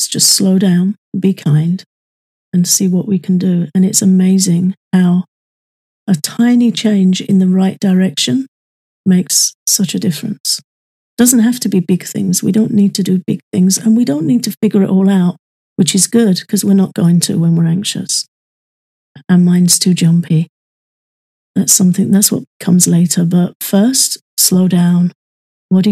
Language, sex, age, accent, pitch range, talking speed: English, female, 40-59, British, 175-195 Hz, 175 wpm